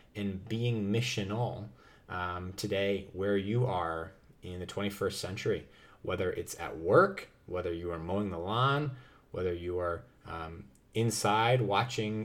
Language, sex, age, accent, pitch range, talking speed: English, male, 20-39, American, 100-125 Hz, 130 wpm